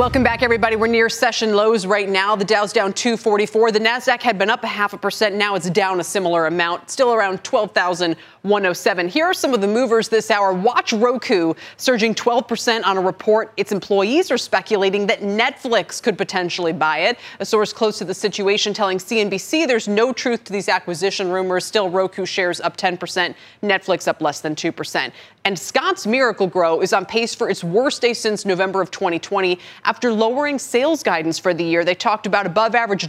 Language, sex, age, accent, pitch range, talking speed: English, female, 30-49, American, 185-230 Hz, 195 wpm